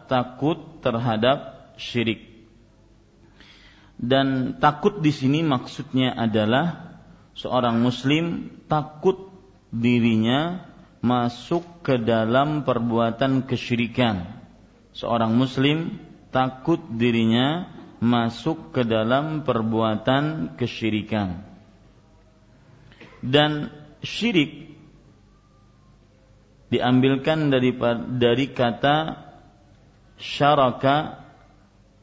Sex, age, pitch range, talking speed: male, 40-59, 115-145 Hz, 65 wpm